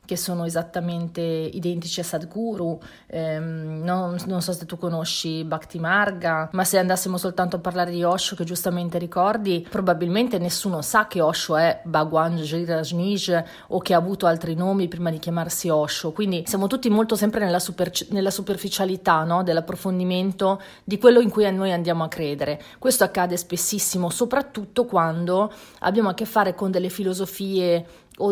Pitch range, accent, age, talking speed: 170-200 Hz, native, 30-49, 155 wpm